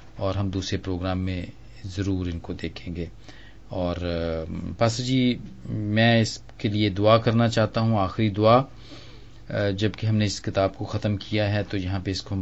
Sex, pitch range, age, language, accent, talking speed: male, 100-115 Hz, 40-59, English, Indian, 155 wpm